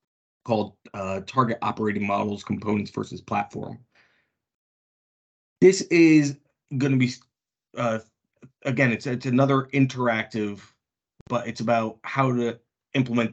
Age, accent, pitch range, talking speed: 20-39, American, 100-115 Hz, 115 wpm